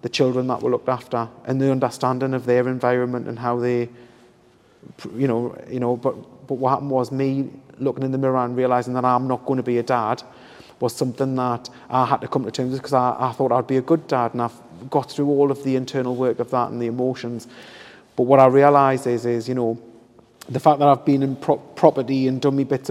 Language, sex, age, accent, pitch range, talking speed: English, male, 30-49, British, 125-135 Hz, 240 wpm